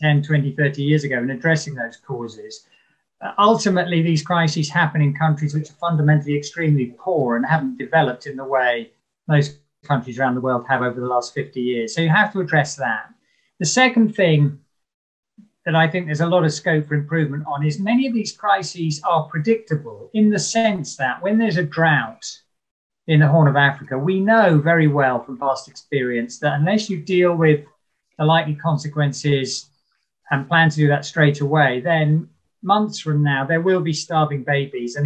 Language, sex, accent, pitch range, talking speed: English, male, British, 145-180 Hz, 190 wpm